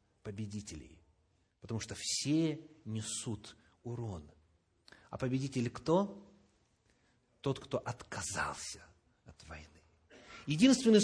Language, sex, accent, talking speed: Russian, male, native, 80 wpm